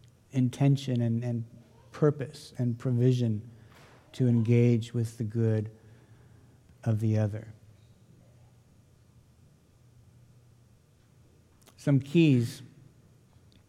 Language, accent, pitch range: English, American, 115-135 Hz